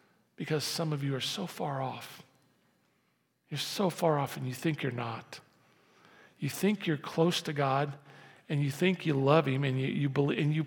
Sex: male